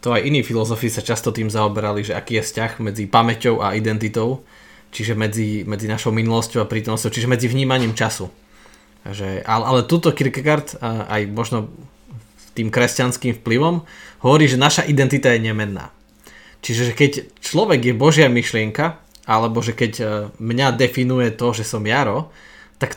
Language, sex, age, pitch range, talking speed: Slovak, male, 20-39, 110-140 Hz, 155 wpm